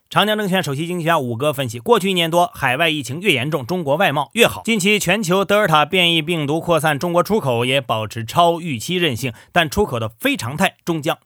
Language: Chinese